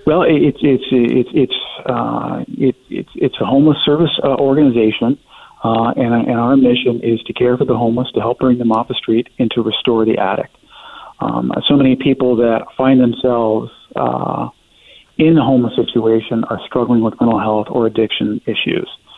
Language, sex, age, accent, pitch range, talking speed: English, male, 40-59, American, 115-130 Hz, 180 wpm